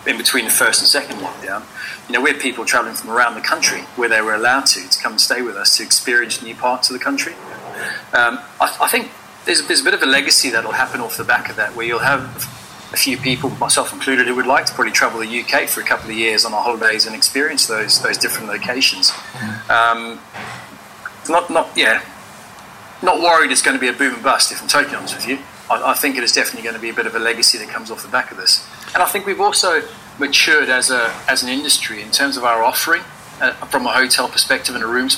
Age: 30-49